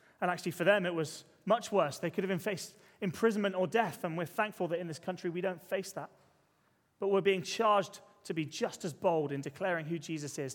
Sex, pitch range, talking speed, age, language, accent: male, 175-215 Hz, 230 wpm, 30-49, English, British